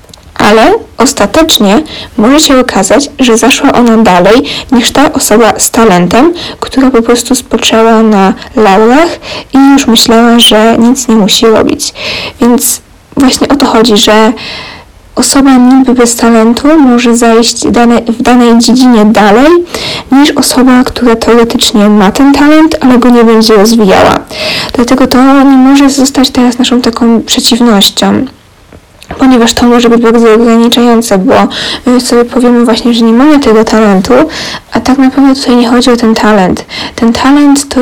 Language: Polish